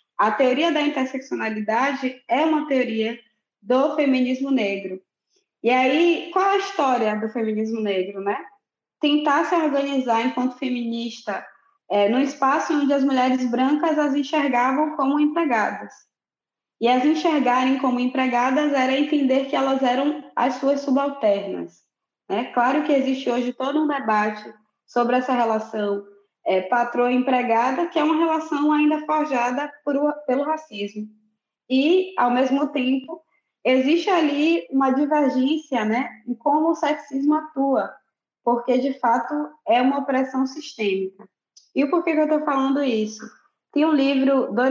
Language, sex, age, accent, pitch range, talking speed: Portuguese, female, 20-39, Brazilian, 235-295 Hz, 140 wpm